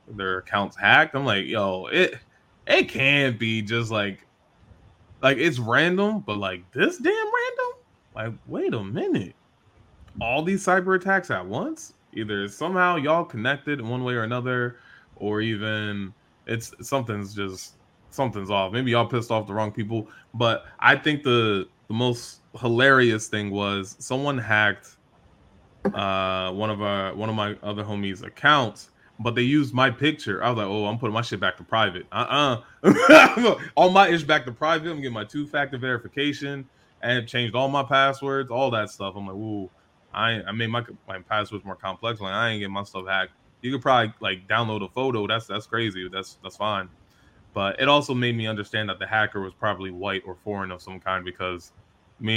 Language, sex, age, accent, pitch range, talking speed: English, male, 20-39, American, 100-130 Hz, 185 wpm